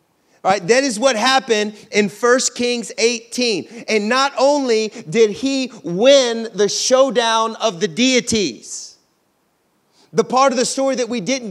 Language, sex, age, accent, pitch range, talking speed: English, male, 40-59, American, 215-255 Hz, 145 wpm